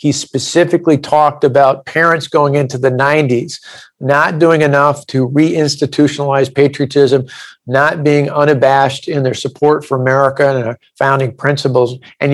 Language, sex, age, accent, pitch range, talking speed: English, male, 50-69, American, 135-155 Hz, 130 wpm